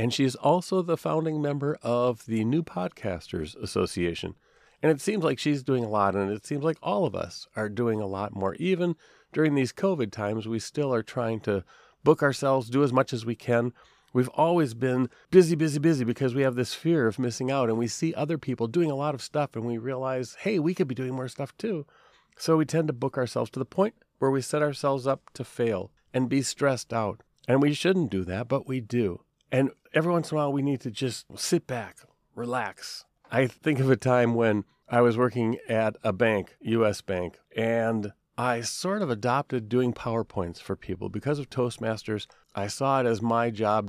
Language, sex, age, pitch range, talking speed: English, male, 40-59, 110-145 Hz, 215 wpm